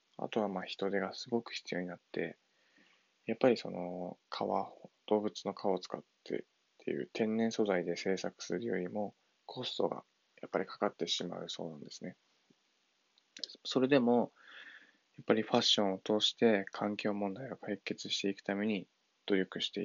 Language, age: Japanese, 20-39